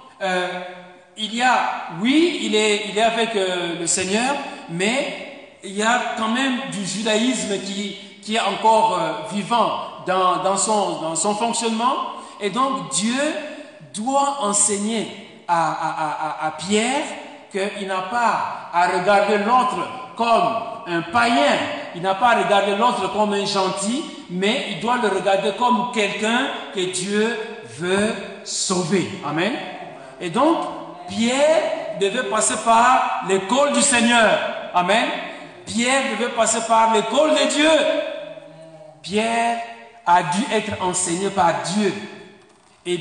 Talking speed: 135 wpm